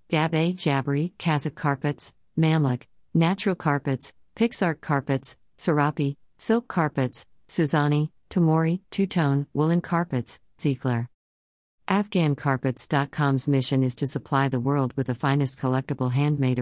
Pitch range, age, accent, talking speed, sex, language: 130-155 Hz, 50-69, American, 110 wpm, female, English